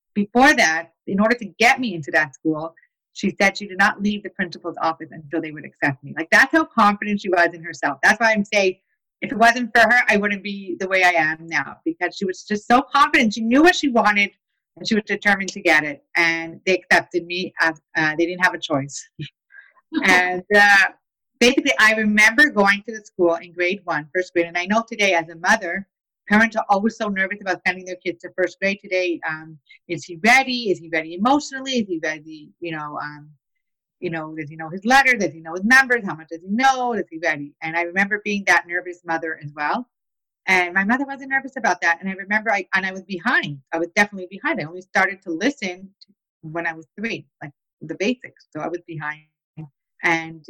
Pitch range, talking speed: 165-215 Hz, 225 wpm